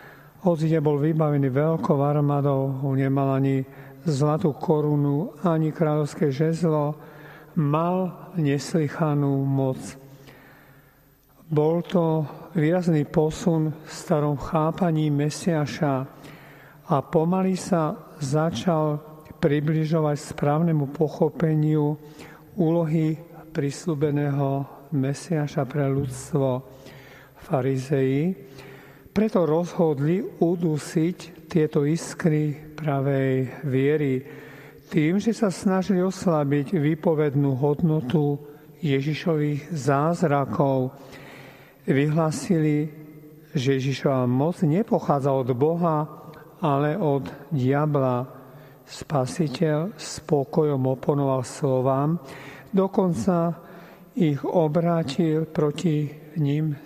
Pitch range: 140-160 Hz